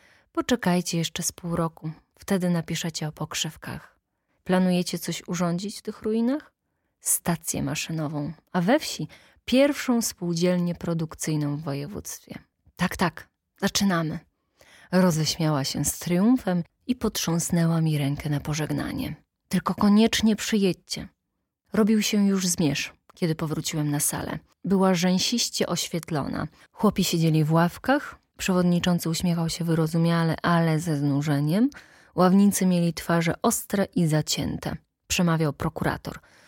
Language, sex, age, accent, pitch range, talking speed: Polish, female, 20-39, native, 160-200 Hz, 115 wpm